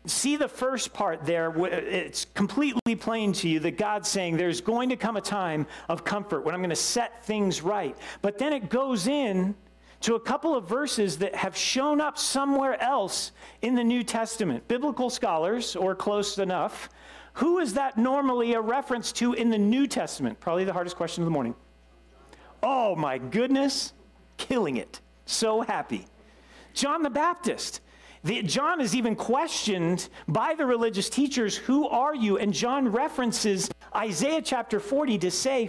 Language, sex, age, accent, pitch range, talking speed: English, male, 40-59, American, 185-250 Hz, 170 wpm